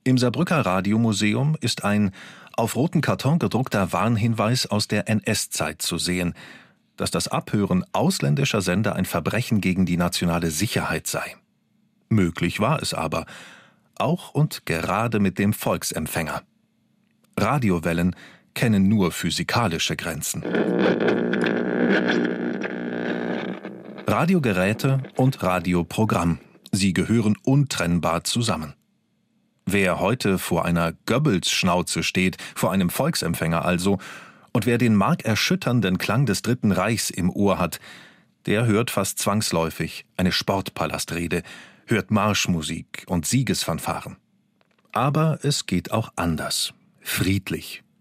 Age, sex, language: 40-59, male, German